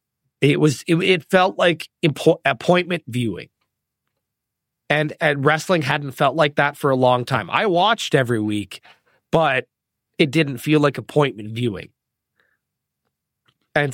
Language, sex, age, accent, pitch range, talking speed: English, male, 30-49, American, 125-150 Hz, 140 wpm